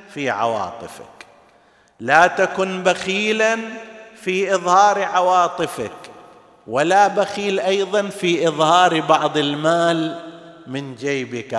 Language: Arabic